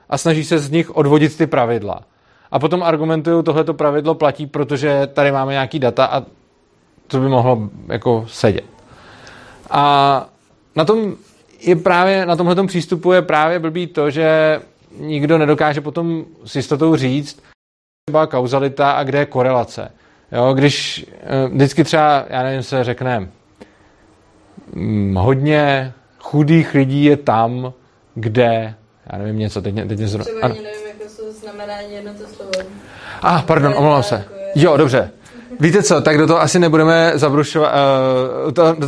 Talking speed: 135 wpm